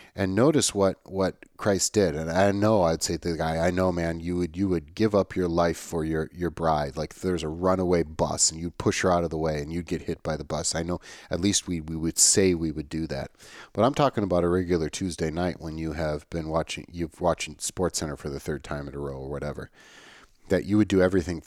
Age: 40-59